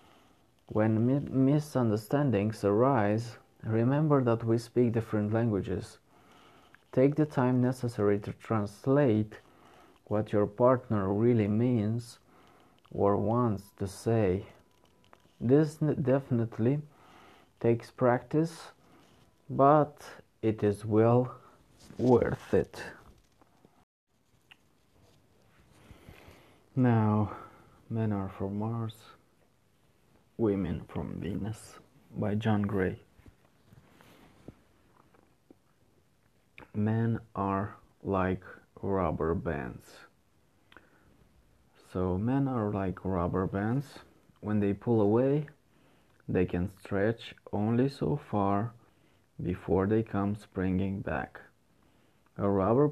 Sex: male